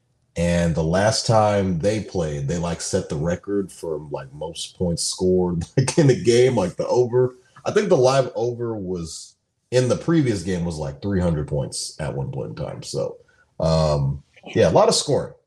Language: English